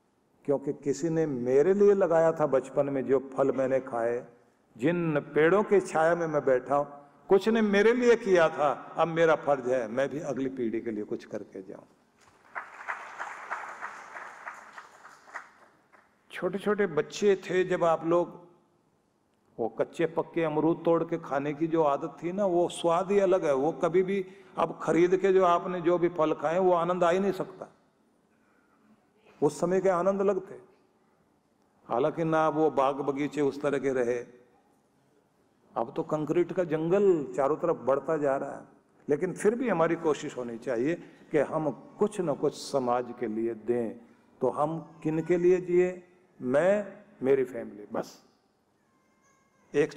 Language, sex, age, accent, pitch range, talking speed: Hindi, male, 50-69, native, 135-180 Hz, 160 wpm